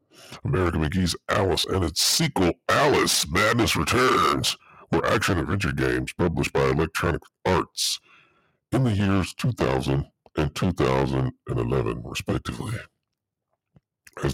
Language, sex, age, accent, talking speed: English, female, 60-79, American, 100 wpm